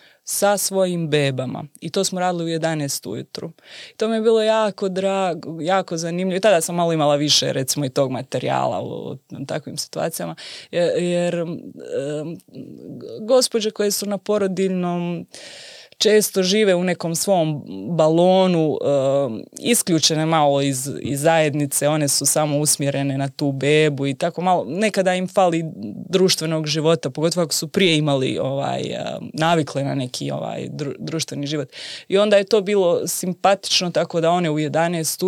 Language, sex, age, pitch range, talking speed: Croatian, female, 20-39, 145-180 Hz, 150 wpm